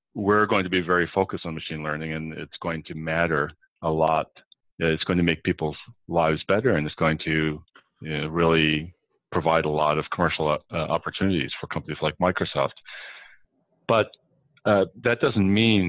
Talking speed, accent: 175 wpm, American